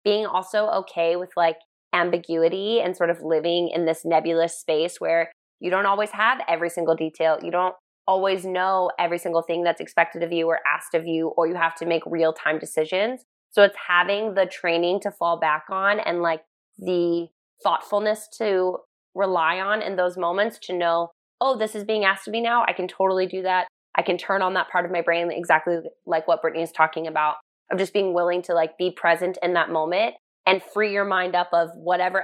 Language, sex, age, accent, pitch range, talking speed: English, female, 20-39, American, 165-190 Hz, 210 wpm